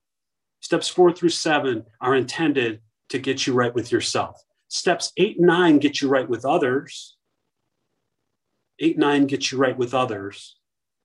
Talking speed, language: 150 wpm, English